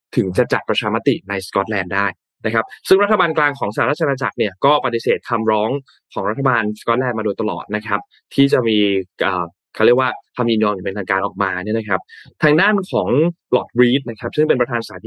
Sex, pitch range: male, 105-140 Hz